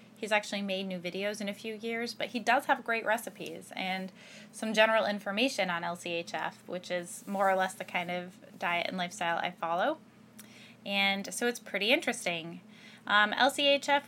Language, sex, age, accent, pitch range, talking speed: English, female, 20-39, American, 195-230 Hz, 175 wpm